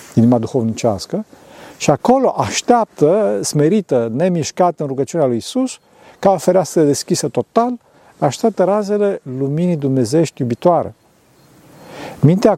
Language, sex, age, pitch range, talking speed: Romanian, male, 40-59, 130-190 Hz, 105 wpm